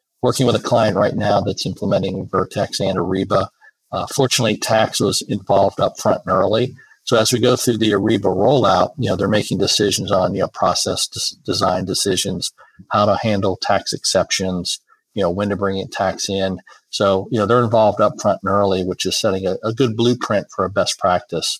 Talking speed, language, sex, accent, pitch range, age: 195 wpm, English, male, American, 95-110 Hz, 40-59